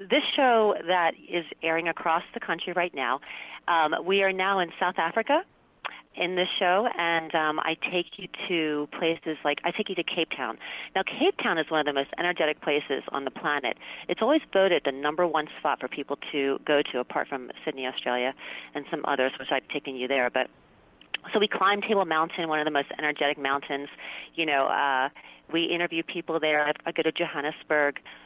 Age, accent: 40-59, American